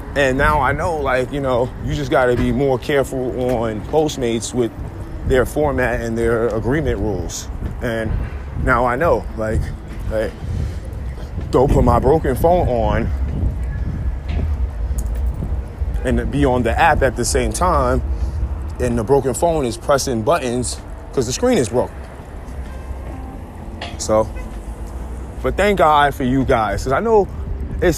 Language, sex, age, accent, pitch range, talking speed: English, male, 20-39, American, 85-135 Hz, 145 wpm